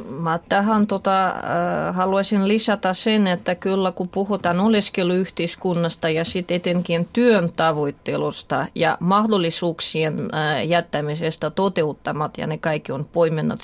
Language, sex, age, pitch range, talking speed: Finnish, female, 30-49, 170-215 Hz, 120 wpm